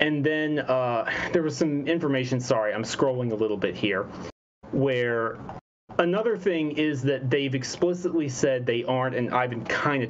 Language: English